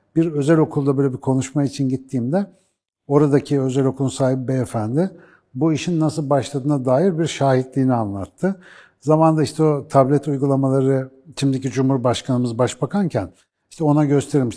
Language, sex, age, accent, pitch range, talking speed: Turkish, male, 60-79, native, 130-170 Hz, 130 wpm